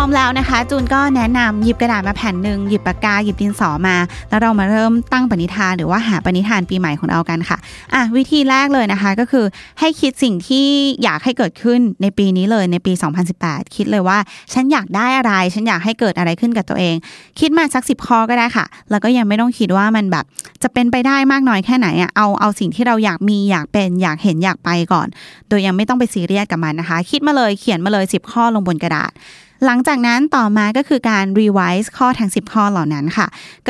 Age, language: 20-39, Thai